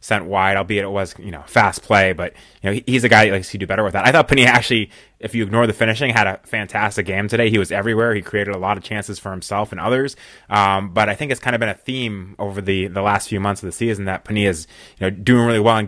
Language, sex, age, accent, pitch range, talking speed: English, male, 20-39, American, 95-110 Hz, 285 wpm